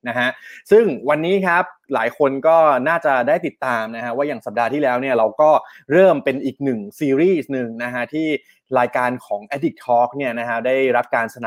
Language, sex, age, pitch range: Thai, male, 20-39, 120-150 Hz